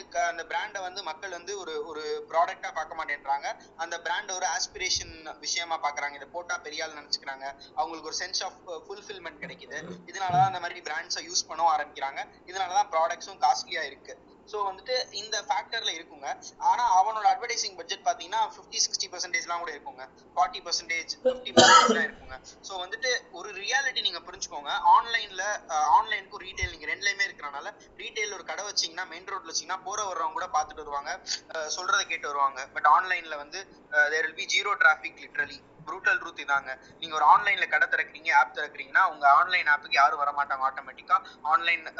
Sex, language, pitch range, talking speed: male, English, 155-220 Hz, 145 wpm